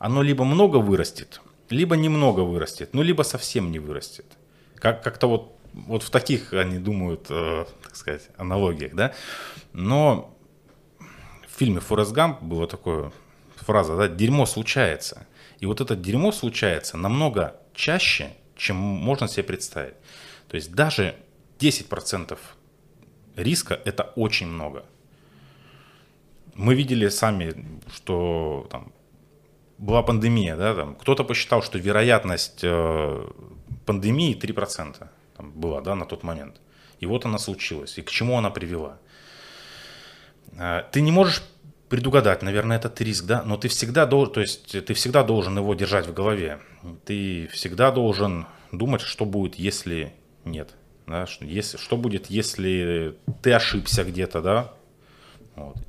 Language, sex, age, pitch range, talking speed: Russian, male, 30-49, 90-125 Hz, 135 wpm